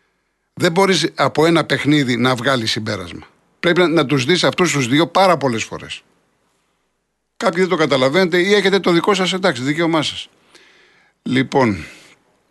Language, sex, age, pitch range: Greek, male, 50-69, 115-145 Hz